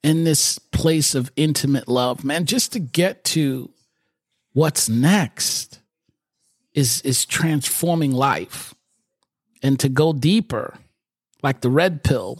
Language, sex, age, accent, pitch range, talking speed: English, male, 40-59, American, 125-155 Hz, 120 wpm